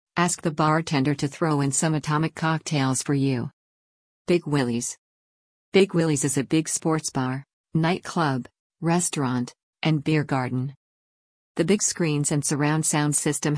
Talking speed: 140 wpm